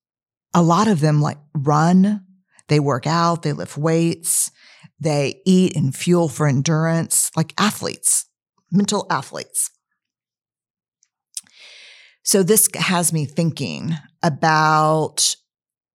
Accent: American